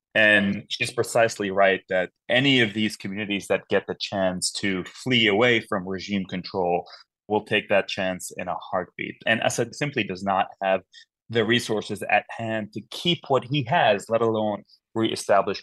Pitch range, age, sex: 100-120 Hz, 30-49, male